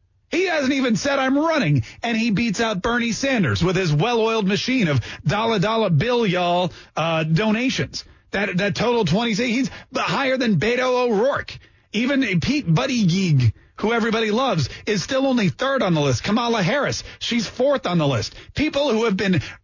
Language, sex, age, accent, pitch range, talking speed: English, male, 30-49, American, 150-225 Hz, 170 wpm